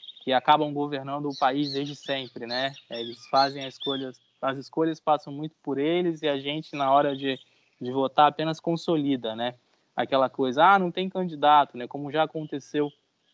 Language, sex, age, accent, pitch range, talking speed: Portuguese, male, 20-39, Brazilian, 125-150 Hz, 175 wpm